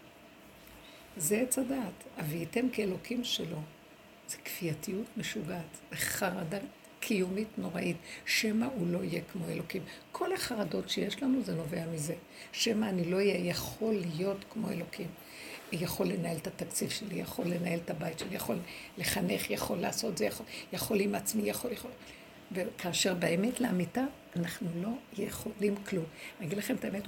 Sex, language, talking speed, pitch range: female, Hebrew, 150 wpm, 175-230 Hz